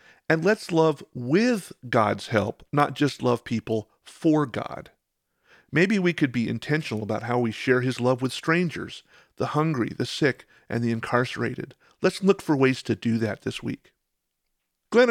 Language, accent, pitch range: English, American, 120-165 Hz